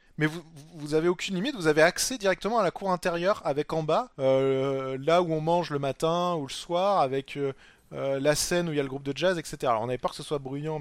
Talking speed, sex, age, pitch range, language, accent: 265 wpm, male, 20-39, 130-165 Hz, French, French